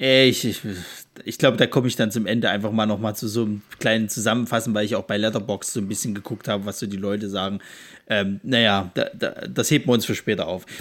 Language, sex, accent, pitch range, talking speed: German, male, German, 115-165 Hz, 250 wpm